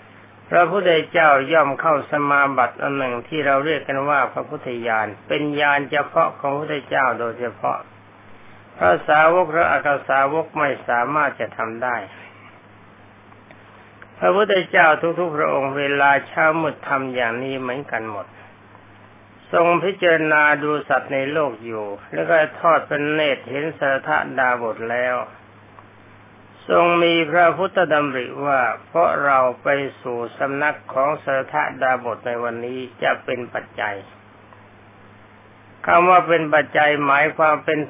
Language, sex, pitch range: Thai, male, 110-155 Hz